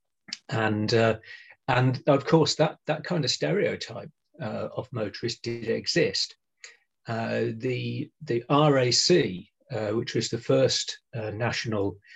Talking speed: 130 wpm